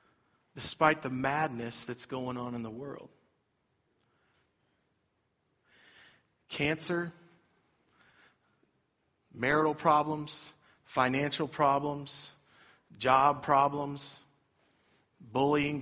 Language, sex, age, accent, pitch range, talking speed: English, male, 40-59, American, 130-150 Hz, 65 wpm